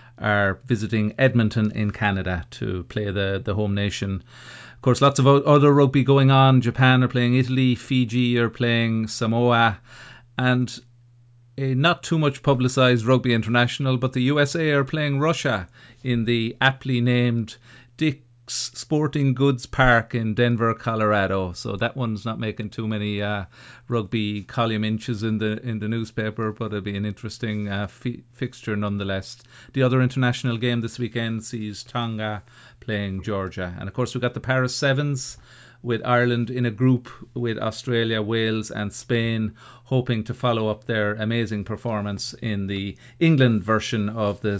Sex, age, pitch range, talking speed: male, 40-59, 105-125 Hz, 160 wpm